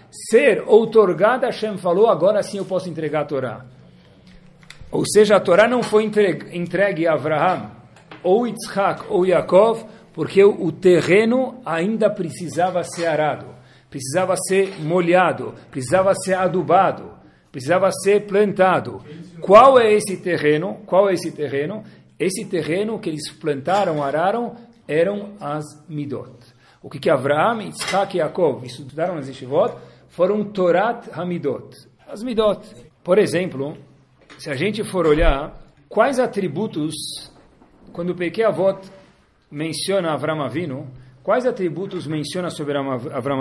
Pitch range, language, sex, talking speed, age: 150-205 Hz, Portuguese, male, 125 wpm, 50-69